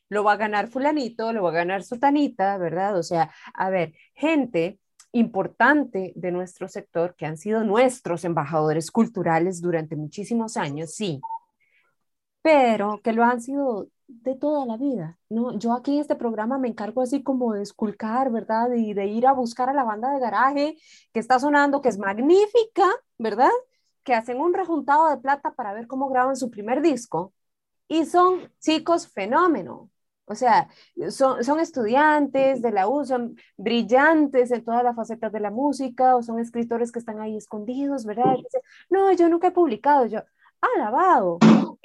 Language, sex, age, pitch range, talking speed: Spanish, female, 20-39, 210-290 Hz, 170 wpm